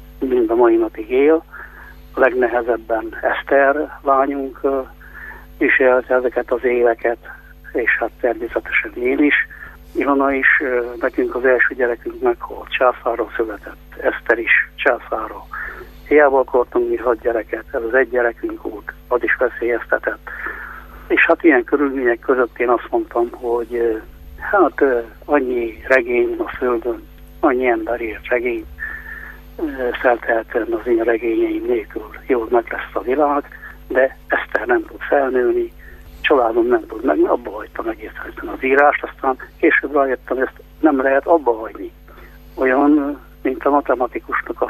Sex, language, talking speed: male, Hungarian, 130 wpm